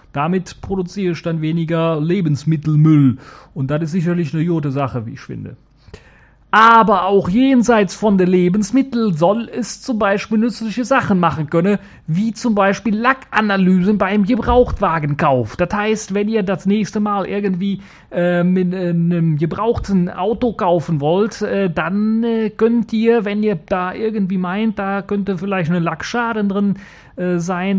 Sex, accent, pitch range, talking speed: male, German, 165-210 Hz, 150 wpm